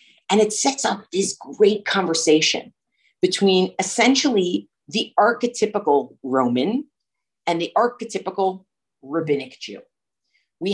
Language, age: English, 40-59